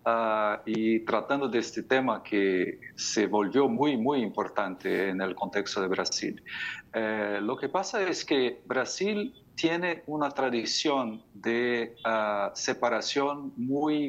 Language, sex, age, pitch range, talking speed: Spanish, male, 50-69, 115-160 Hz, 130 wpm